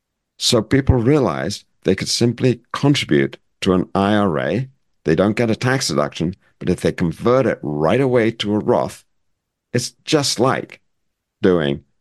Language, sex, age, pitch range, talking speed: English, male, 50-69, 85-115 Hz, 150 wpm